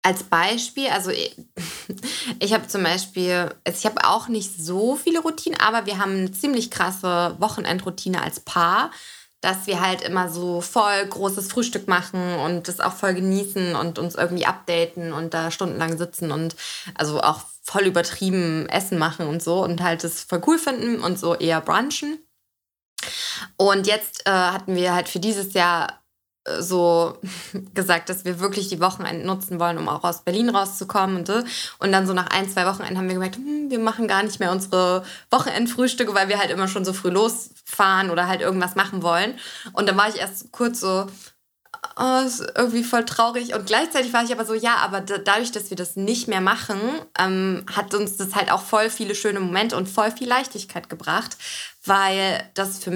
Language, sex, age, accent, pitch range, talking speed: German, female, 20-39, German, 180-220 Hz, 180 wpm